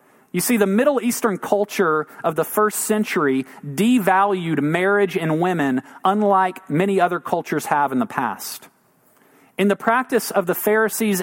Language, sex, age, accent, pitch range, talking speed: English, male, 40-59, American, 170-210 Hz, 150 wpm